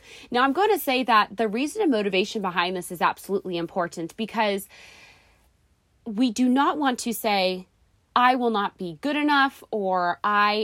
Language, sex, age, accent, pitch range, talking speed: English, female, 20-39, American, 190-255 Hz, 170 wpm